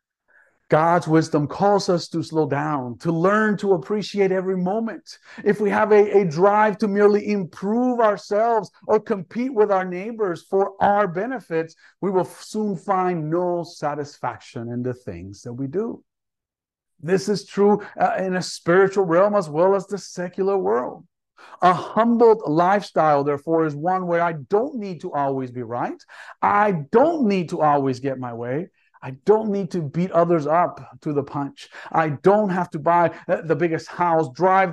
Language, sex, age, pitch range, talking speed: English, male, 50-69, 145-200 Hz, 170 wpm